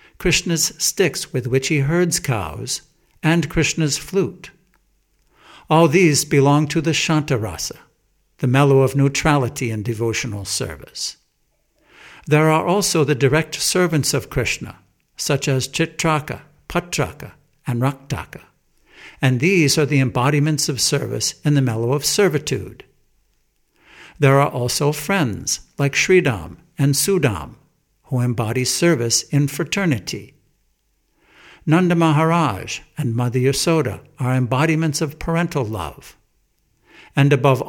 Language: English